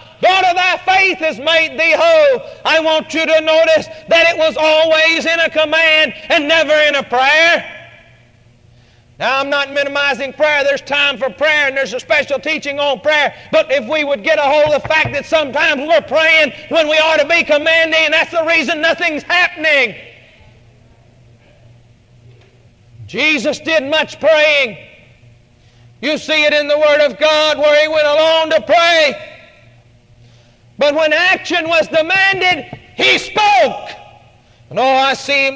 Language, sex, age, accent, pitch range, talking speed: English, male, 40-59, American, 265-315 Hz, 155 wpm